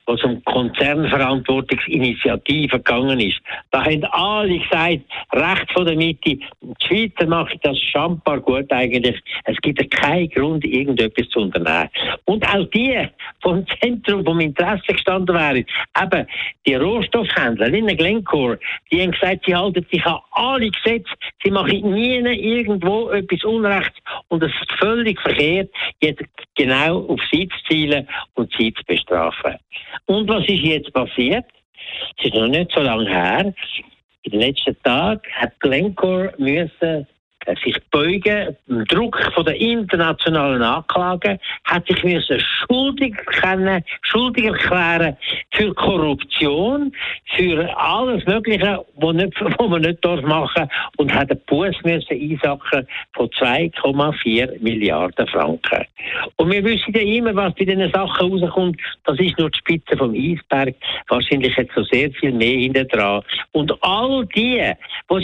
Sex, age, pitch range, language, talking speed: male, 60-79, 145-200 Hz, German, 140 wpm